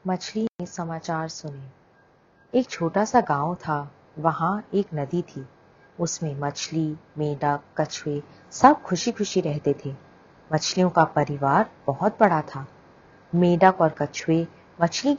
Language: English